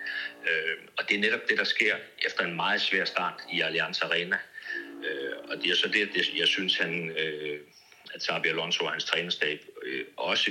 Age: 60-79